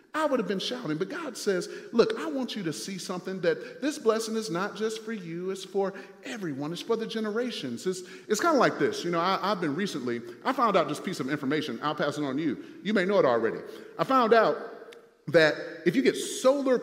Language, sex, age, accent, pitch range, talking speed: English, male, 40-59, American, 190-285 Hz, 245 wpm